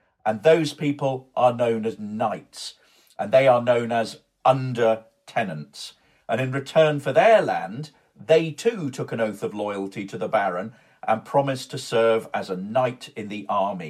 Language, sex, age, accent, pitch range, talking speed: English, male, 50-69, British, 115-145 Hz, 170 wpm